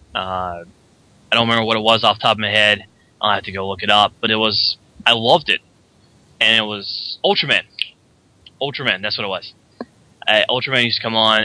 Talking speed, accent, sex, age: 215 wpm, American, male, 20-39